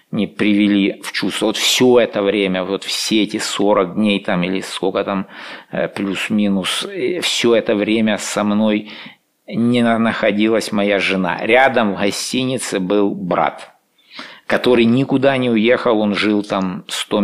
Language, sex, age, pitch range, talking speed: English, male, 50-69, 100-115 Hz, 140 wpm